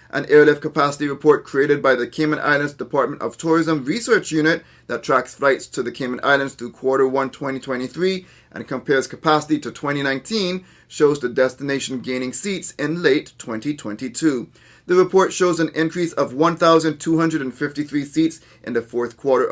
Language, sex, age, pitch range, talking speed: English, male, 30-49, 130-170 Hz, 155 wpm